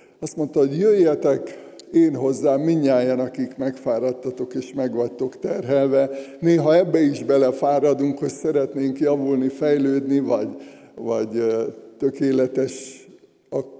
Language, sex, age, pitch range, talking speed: Hungarian, male, 60-79, 135-155 Hz, 105 wpm